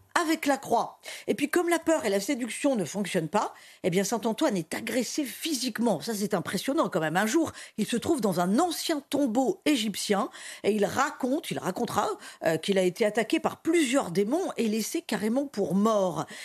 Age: 50-69